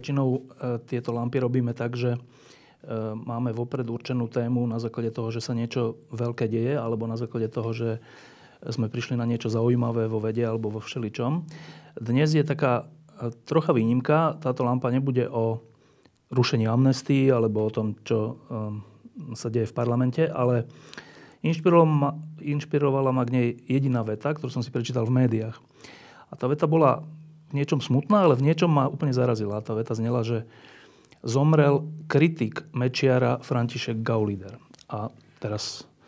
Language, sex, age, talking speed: Slovak, male, 40-59, 145 wpm